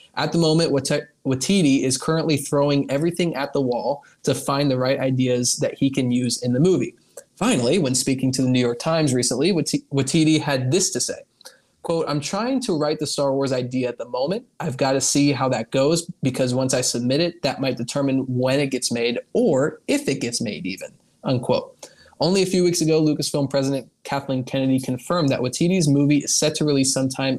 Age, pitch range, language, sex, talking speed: 20-39, 130-160 Hz, English, male, 205 wpm